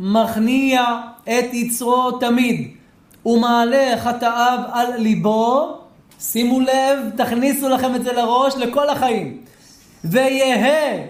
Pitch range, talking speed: 240-310 Hz, 95 wpm